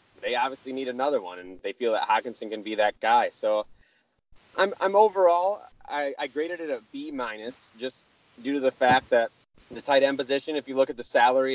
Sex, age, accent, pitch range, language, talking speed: male, 30-49, American, 115-135 Hz, English, 215 wpm